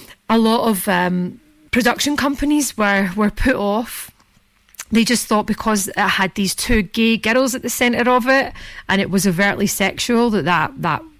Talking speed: 175 wpm